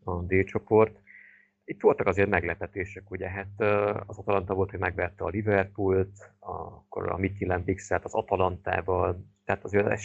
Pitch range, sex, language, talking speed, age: 90-100 Hz, male, Hungarian, 155 wpm, 30-49